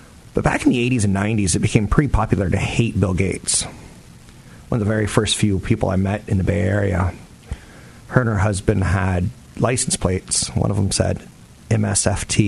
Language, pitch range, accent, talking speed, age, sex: English, 95-115 Hz, American, 190 wpm, 30-49, male